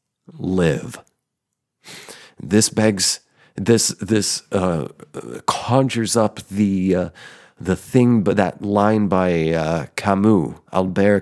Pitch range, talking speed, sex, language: 85-105 Hz, 100 wpm, male, English